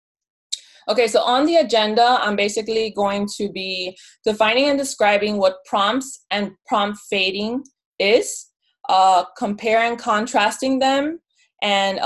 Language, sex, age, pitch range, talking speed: English, female, 20-39, 195-245 Hz, 125 wpm